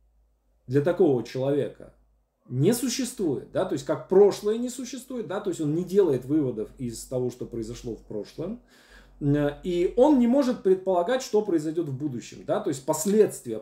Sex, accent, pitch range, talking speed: male, native, 125-180 Hz, 170 wpm